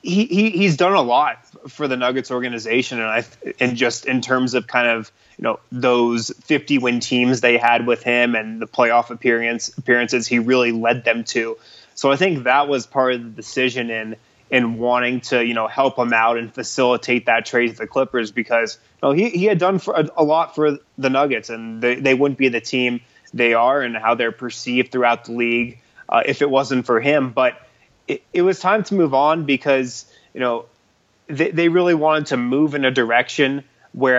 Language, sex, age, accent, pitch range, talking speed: English, male, 20-39, American, 120-140 Hz, 210 wpm